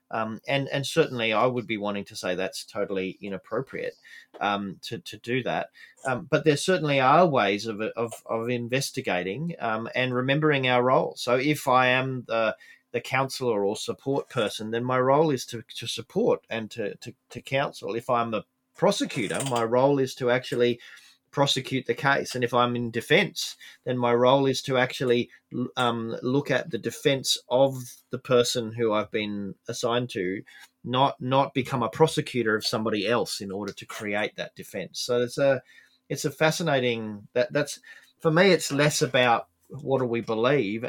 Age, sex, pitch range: 30-49, male, 115-135 Hz